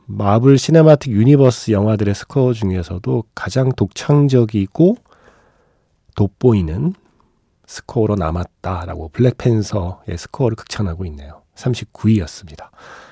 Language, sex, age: Korean, male, 40-59